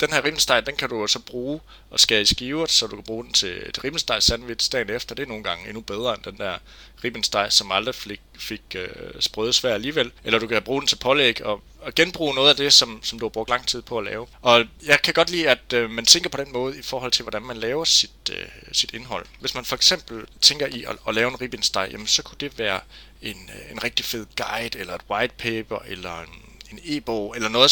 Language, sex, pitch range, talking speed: Danish, male, 105-130 Hz, 230 wpm